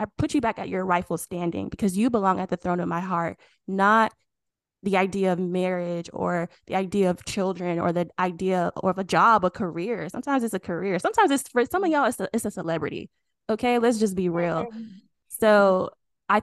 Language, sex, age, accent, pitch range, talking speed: English, female, 10-29, American, 180-225 Hz, 210 wpm